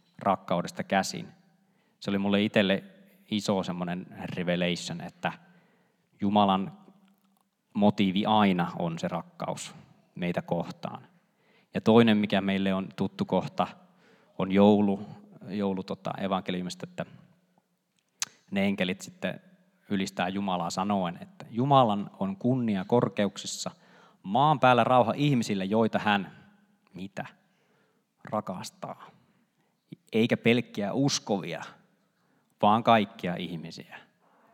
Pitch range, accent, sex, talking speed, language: 100-145 Hz, native, male, 95 wpm, Finnish